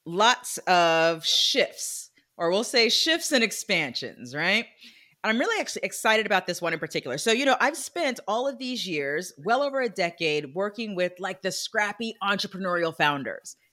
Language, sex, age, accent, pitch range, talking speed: English, female, 30-49, American, 170-240 Hz, 175 wpm